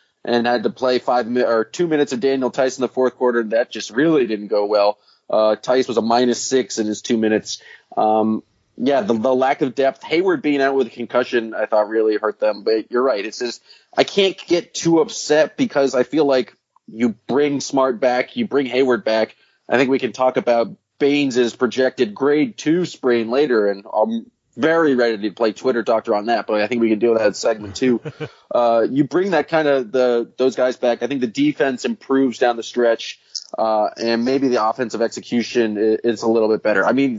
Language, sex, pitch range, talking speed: English, male, 115-140 Hz, 220 wpm